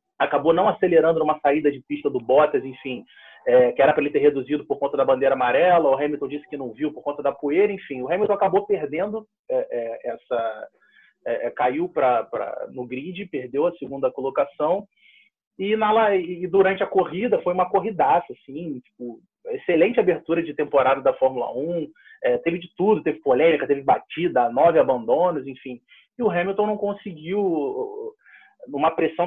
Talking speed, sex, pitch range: 160 wpm, male, 140-210 Hz